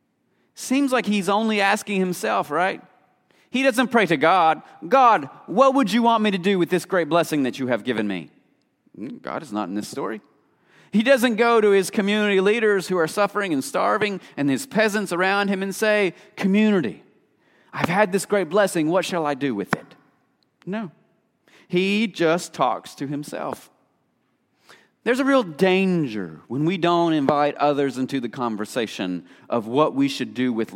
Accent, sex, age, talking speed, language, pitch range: American, male, 40-59, 175 wpm, English, 145-210 Hz